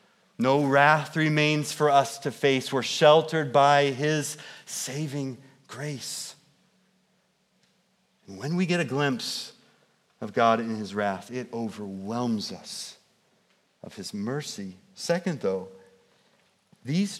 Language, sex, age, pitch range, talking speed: English, male, 40-59, 135-185 Hz, 115 wpm